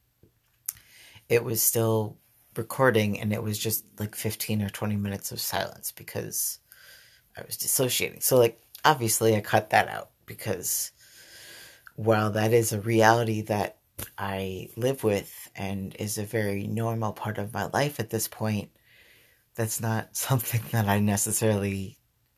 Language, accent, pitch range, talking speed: English, American, 105-115 Hz, 145 wpm